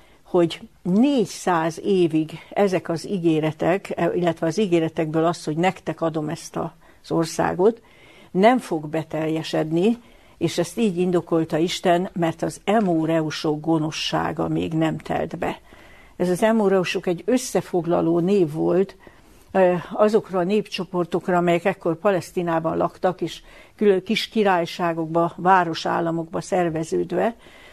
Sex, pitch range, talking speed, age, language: female, 165-190 Hz, 115 wpm, 60-79, Hungarian